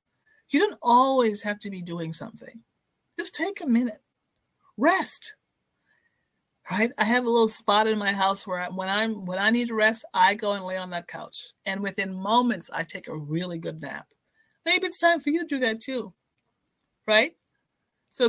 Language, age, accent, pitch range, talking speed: English, 40-59, American, 195-255 Hz, 185 wpm